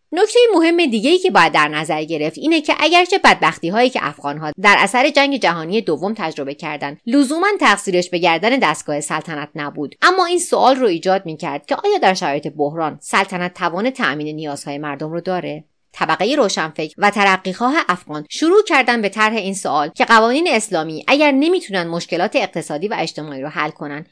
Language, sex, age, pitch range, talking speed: Persian, female, 30-49, 155-240 Hz, 180 wpm